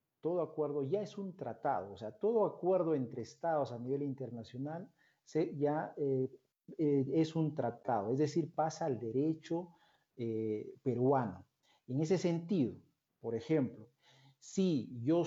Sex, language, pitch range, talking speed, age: male, Spanish, 130-165 Hz, 140 wpm, 50-69